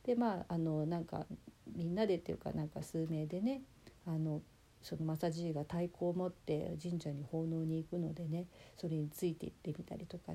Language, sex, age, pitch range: Japanese, female, 40-59, 160-200 Hz